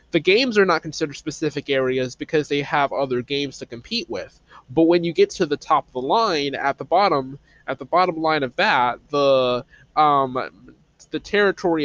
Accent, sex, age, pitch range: American, male, 20-39, 125-160 Hz